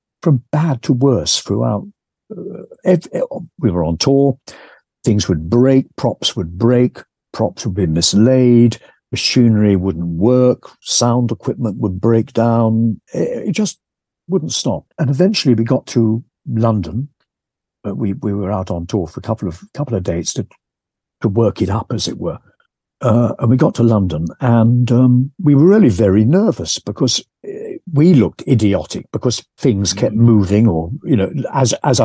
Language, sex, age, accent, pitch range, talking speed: English, male, 60-79, British, 95-130 Hz, 165 wpm